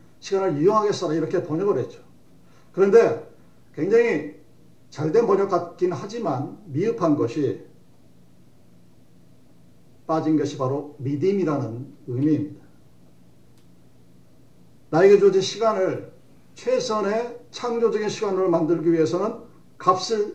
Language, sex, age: Korean, male, 50-69